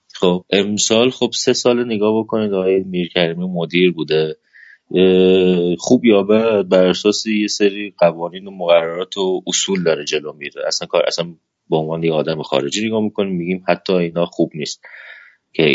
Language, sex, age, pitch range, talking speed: Persian, male, 30-49, 85-100 Hz, 150 wpm